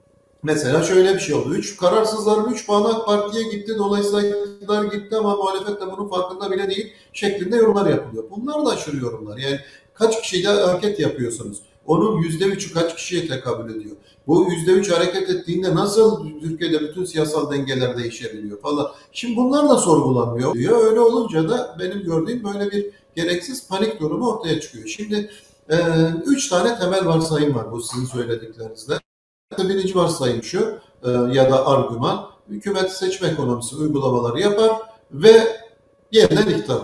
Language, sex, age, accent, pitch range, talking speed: Turkish, male, 50-69, native, 135-200 Hz, 150 wpm